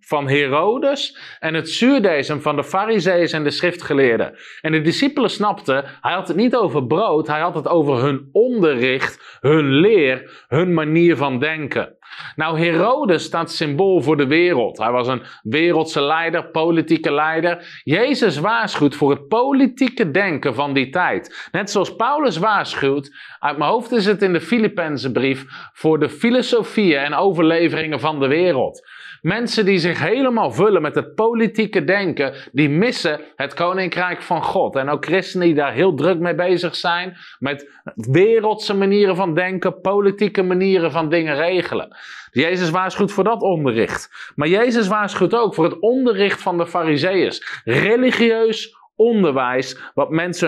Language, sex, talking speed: Dutch, male, 155 wpm